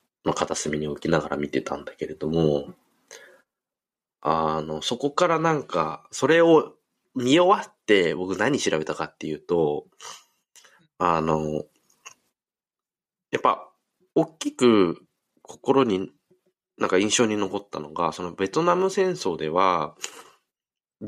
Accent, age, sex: native, 20-39, male